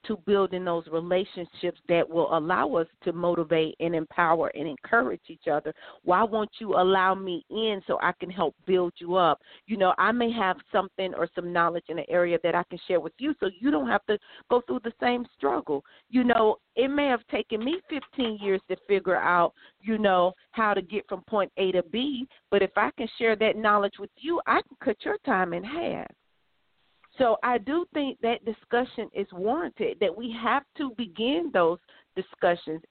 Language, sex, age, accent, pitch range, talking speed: English, female, 40-59, American, 175-225 Hz, 200 wpm